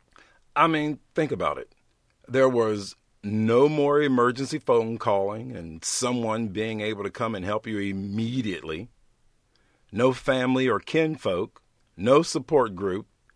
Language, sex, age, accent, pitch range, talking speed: English, male, 50-69, American, 105-130 Hz, 130 wpm